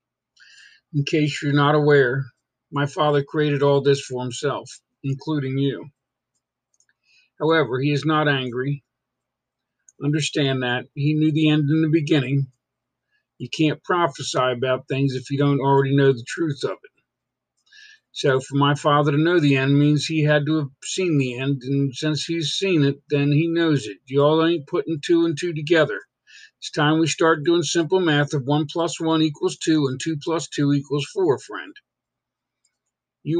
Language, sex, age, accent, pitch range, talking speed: English, male, 50-69, American, 140-165 Hz, 170 wpm